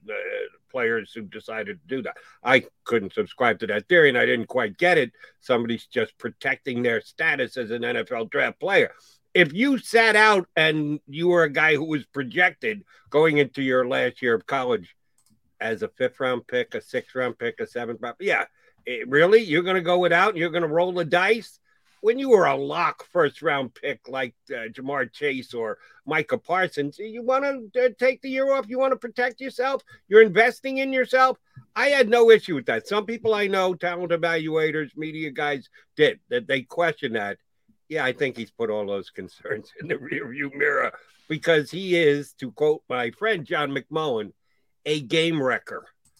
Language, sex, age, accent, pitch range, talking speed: English, male, 60-79, American, 140-225 Hz, 185 wpm